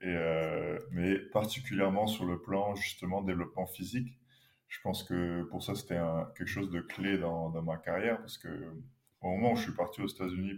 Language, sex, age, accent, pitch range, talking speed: French, male, 20-39, French, 90-110 Hz, 200 wpm